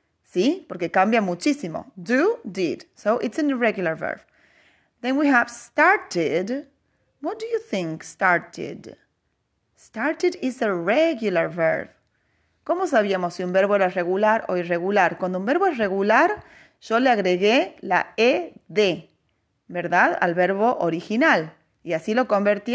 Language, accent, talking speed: English, Spanish, 135 wpm